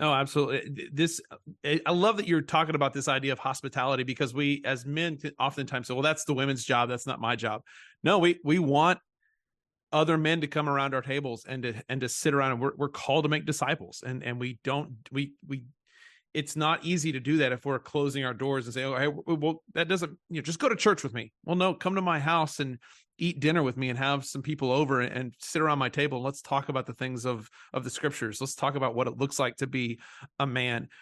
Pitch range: 130-155 Hz